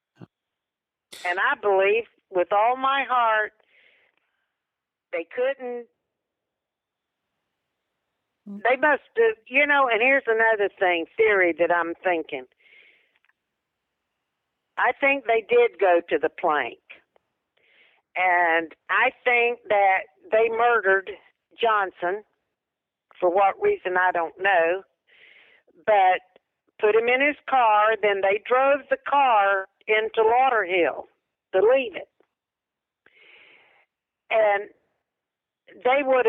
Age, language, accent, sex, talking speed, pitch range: 50-69, English, American, female, 105 wpm, 200-280 Hz